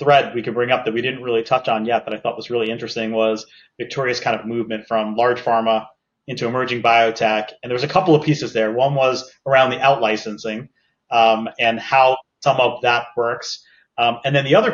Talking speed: 220 wpm